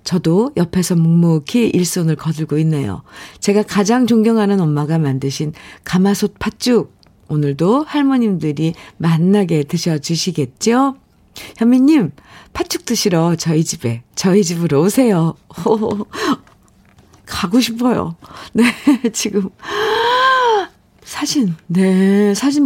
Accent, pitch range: native, 175-235 Hz